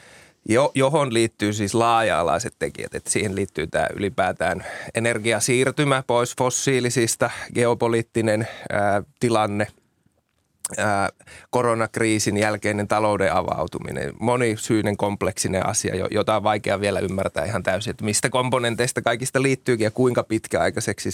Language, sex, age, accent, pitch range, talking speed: Finnish, male, 20-39, native, 105-125 Hz, 115 wpm